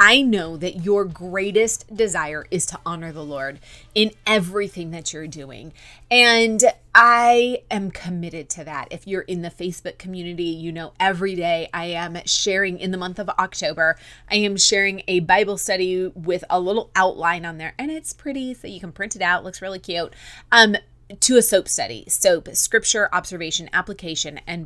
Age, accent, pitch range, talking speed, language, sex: 30-49, American, 175-235 Hz, 185 wpm, English, female